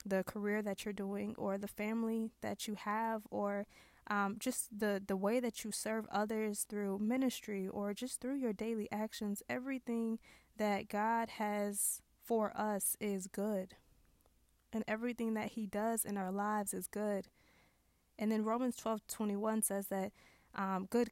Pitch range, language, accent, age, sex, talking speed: 200-225 Hz, English, American, 20-39, female, 160 wpm